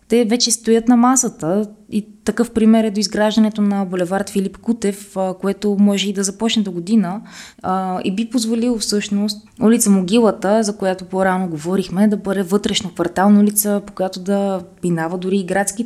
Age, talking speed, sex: 20-39, 165 wpm, female